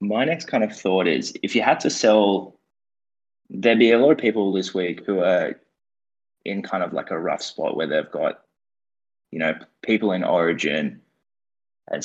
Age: 20-39